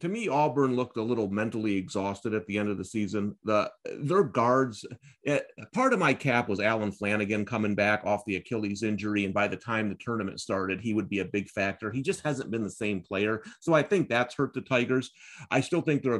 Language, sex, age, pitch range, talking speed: English, male, 30-49, 105-145 Hz, 230 wpm